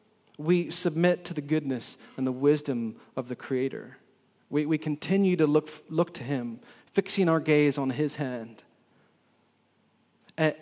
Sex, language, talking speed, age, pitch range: male, English, 145 wpm, 30-49, 145-190 Hz